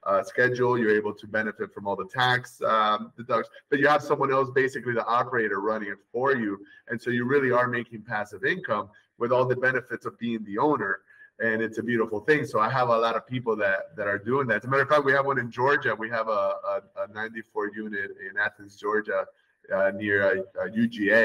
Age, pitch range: 30-49, 105-140 Hz